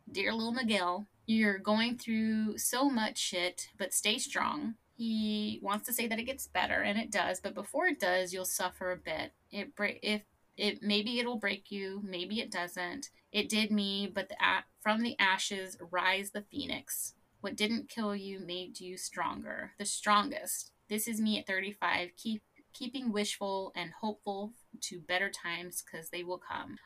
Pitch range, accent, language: 185-220 Hz, American, English